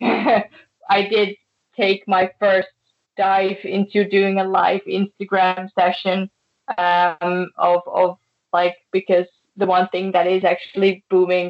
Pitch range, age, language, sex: 180-195 Hz, 20-39, German, female